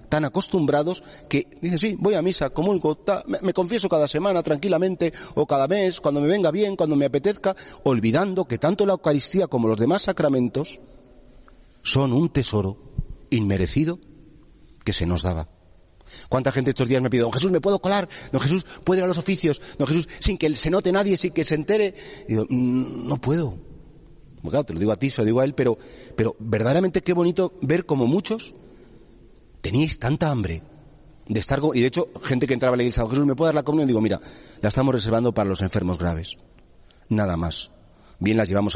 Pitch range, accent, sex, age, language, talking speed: 105-155 Hz, Spanish, male, 40-59, Spanish, 210 wpm